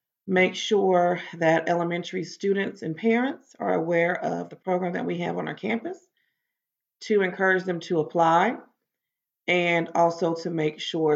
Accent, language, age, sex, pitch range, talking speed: American, English, 30-49, female, 155-195 Hz, 150 wpm